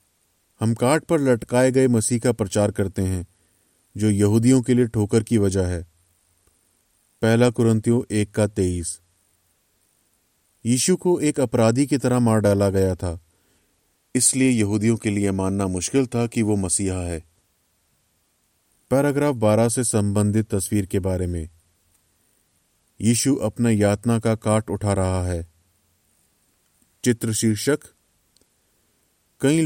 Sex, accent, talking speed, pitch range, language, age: male, native, 125 wpm, 95-120 Hz, Hindi, 30-49